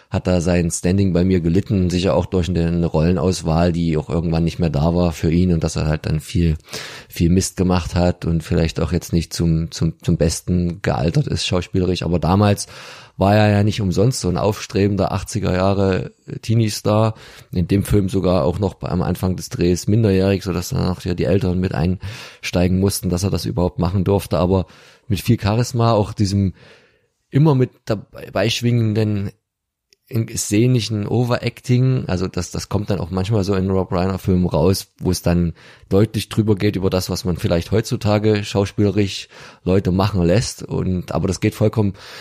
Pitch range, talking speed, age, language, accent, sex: 90-105 Hz, 180 wpm, 20-39, German, German, male